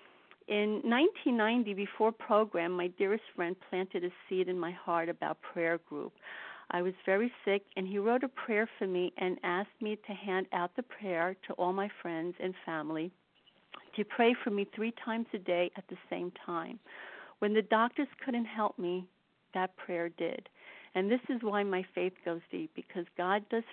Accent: American